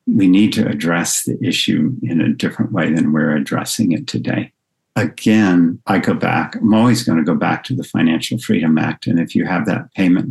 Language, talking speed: English, 210 wpm